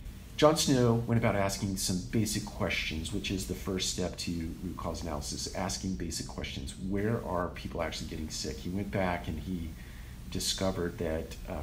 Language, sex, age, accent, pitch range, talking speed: English, male, 40-59, American, 80-100 Hz, 175 wpm